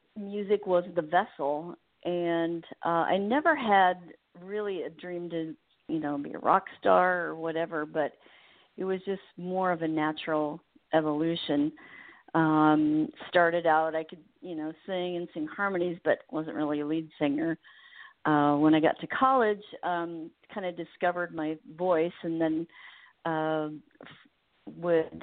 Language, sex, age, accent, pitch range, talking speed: English, female, 50-69, American, 155-185 Hz, 145 wpm